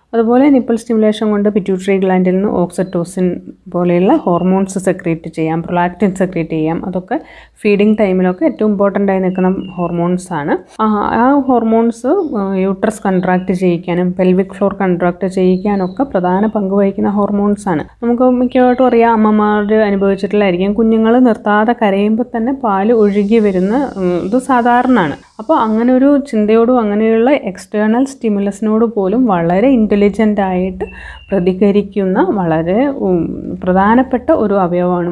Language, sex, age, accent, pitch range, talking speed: Malayalam, female, 30-49, native, 180-225 Hz, 110 wpm